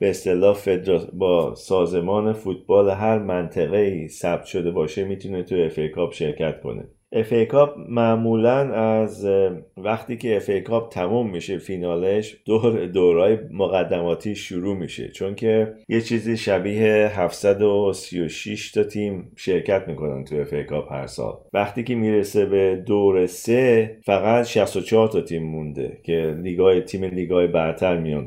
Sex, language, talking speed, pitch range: male, Persian, 130 wpm, 90-115 Hz